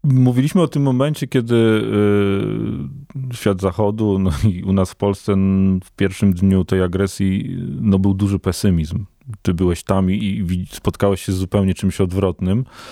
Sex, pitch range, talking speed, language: male, 95-115 Hz, 150 wpm, Polish